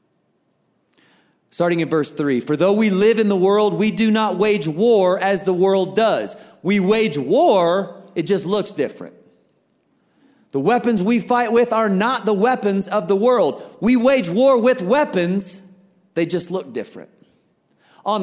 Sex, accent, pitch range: male, American, 140-210 Hz